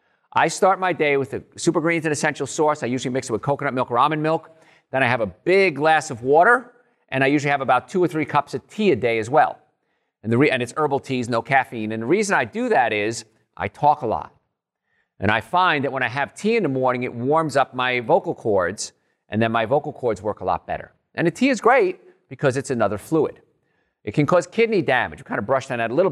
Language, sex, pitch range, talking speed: English, male, 125-170 Hz, 255 wpm